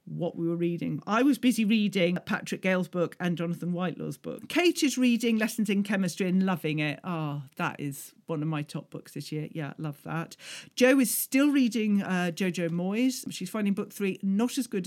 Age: 40-59